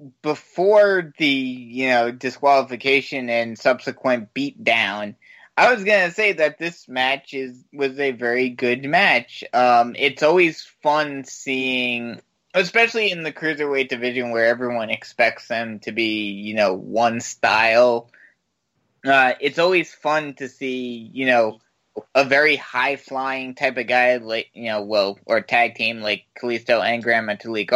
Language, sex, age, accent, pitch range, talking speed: English, male, 20-39, American, 110-140 Hz, 145 wpm